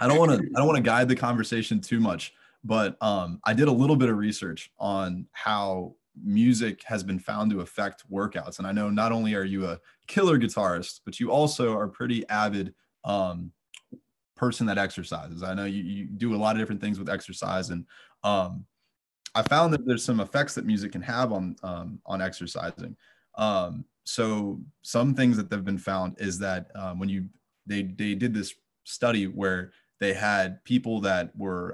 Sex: male